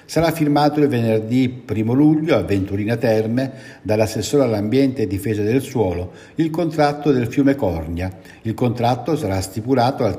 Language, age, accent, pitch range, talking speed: Italian, 60-79, native, 105-140 Hz, 145 wpm